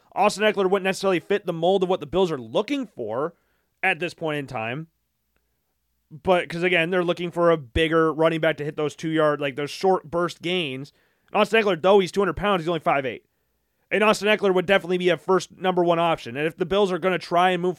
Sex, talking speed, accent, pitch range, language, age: male, 230 wpm, American, 155-195 Hz, English, 30-49